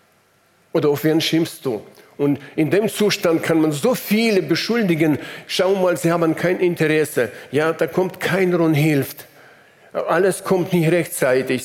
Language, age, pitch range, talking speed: German, 50-69, 130-170 Hz, 155 wpm